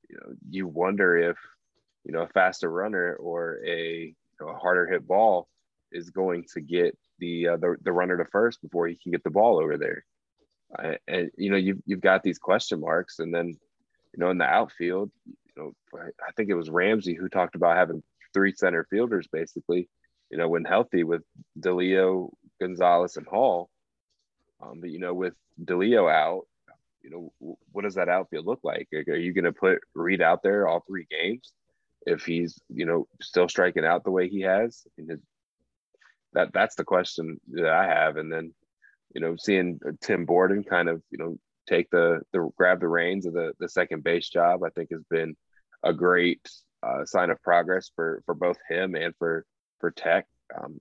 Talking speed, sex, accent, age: 195 wpm, male, American, 20-39